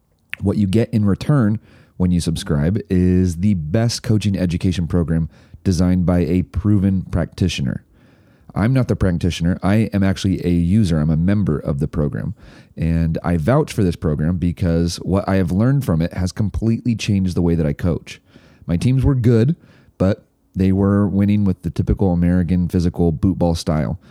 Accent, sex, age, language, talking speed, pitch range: American, male, 30-49, English, 175 wpm, 85-105 Hz